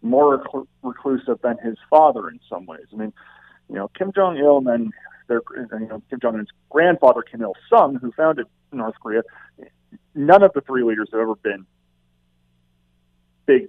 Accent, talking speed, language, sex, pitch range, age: American, 175 wpm, English, male, 100-155 Hz, 40-59